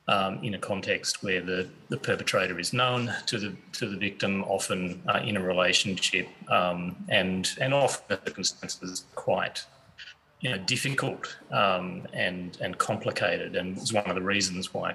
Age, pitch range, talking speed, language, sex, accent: 30-49, 95-125 Hz, 170 wpm, English, male, Australian